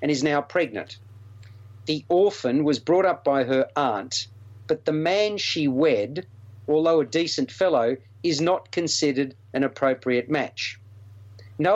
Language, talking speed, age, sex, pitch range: English, 145 wpm, 50-69, male, 105-170 Hz